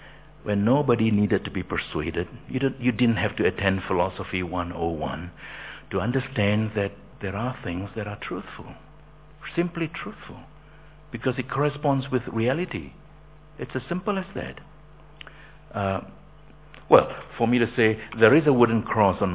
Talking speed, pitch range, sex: 145 wpm, 95-145 Hz, male